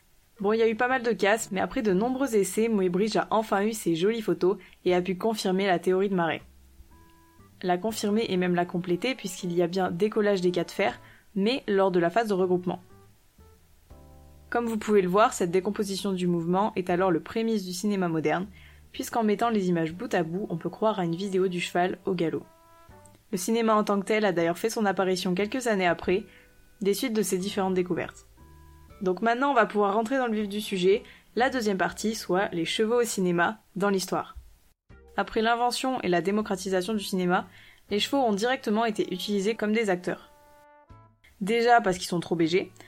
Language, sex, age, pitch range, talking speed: French, female, 20-39, 175-220 Hz, 205 wpm